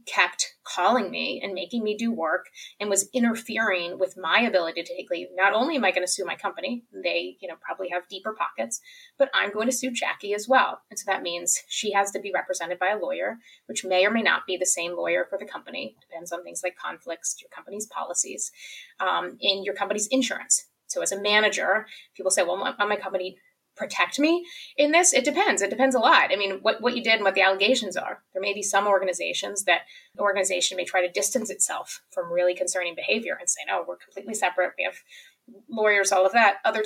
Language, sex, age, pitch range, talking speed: English, female, 20-39, 185-245 Hz, 230 wpm